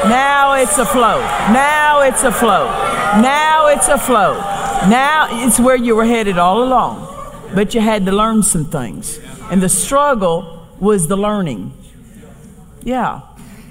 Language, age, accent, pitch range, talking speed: English, 50-69, American, 165-235 Hz, 155 wpm